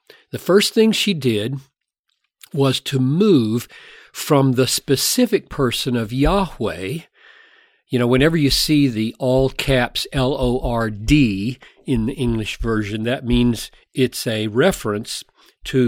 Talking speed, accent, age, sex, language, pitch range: 125 wpm, American, 50-69, male, English, 120-145 Hz